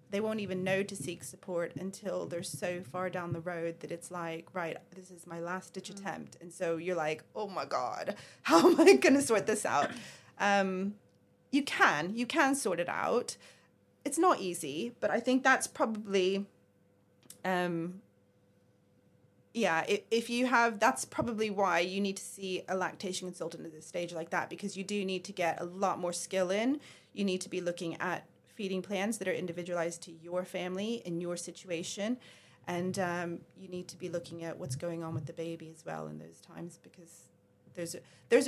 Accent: British